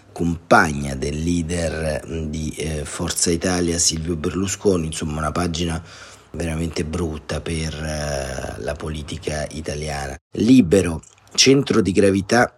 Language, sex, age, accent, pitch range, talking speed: Italian, male, 40-59, native, 80-100 Hz, 100 wpm